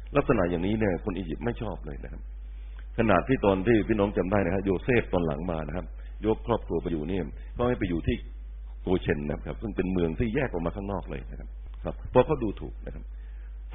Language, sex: Thai, male